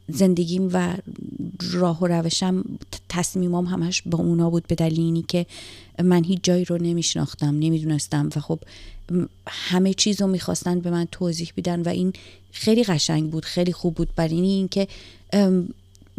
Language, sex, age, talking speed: Persian, female, 30-49, 150 wpm